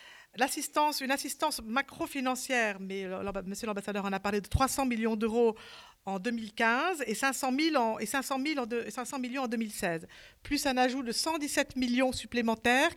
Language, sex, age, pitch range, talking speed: French, female, 50-69, 205-260 Hz, 165 wpm